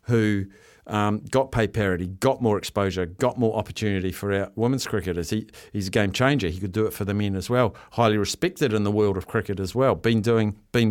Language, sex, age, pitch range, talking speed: English, male, 50-69, 105-130 Hz, 225 wpm